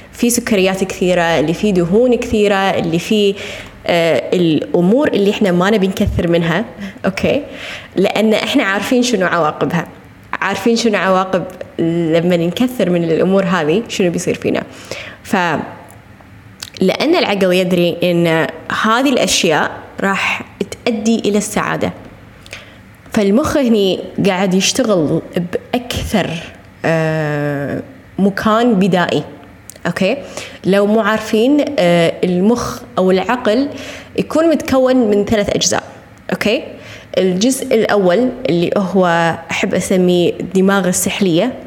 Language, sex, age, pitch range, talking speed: Arabic, female, 20-39, 170-215 Hz, 105 wpm